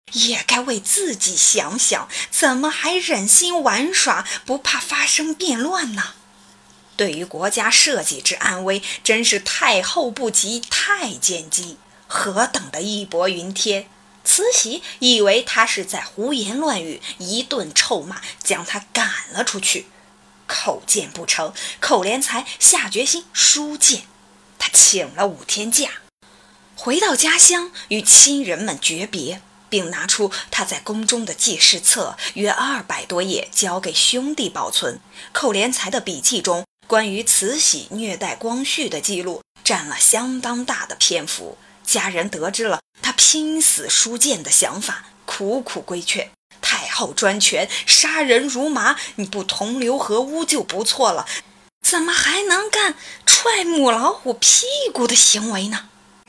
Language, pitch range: Chinese, 200-300 Hz